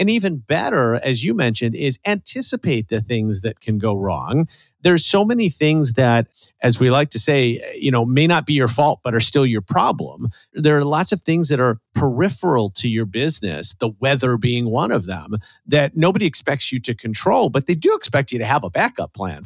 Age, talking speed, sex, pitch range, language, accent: 40-59, 215 wpm, male, 110-155 Hz, English, American